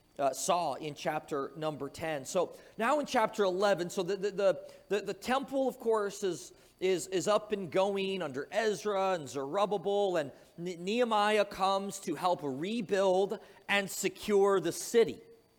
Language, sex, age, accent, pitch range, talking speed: English, male, 40-59, American, 190-240 Hz, 150 wpm